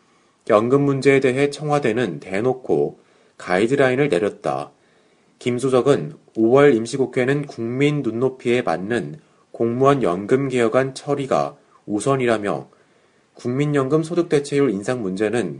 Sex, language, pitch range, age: male, Korean, 105-135 Hz, 30-49